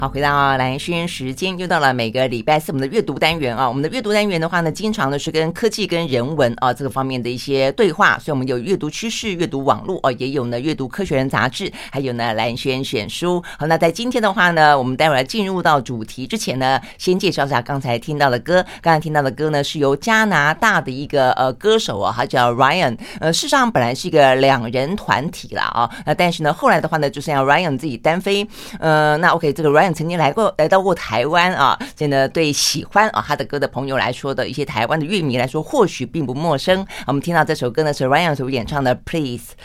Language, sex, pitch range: Chinese, female, 135-175 Hz